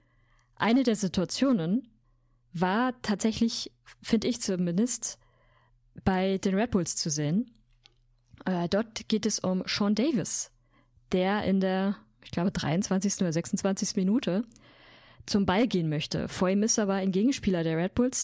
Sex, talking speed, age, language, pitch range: female, 140 wpm, 20-39, German, 155-215 Hz